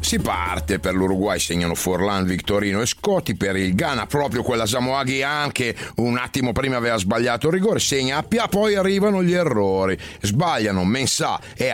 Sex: male